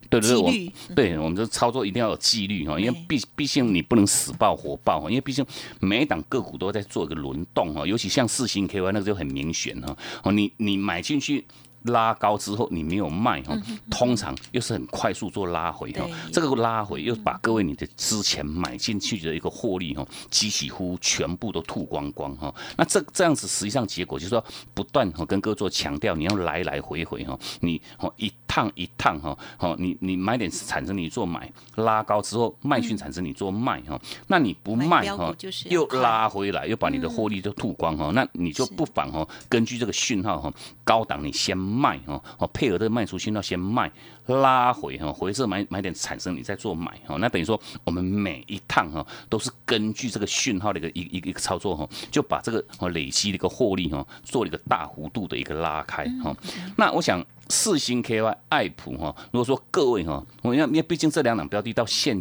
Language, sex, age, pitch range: Chinese, male, 30-49, 95-125 Hz